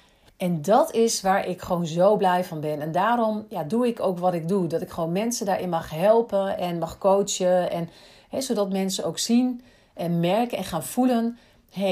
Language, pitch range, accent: Dutch, 170-215 Hz, Dutch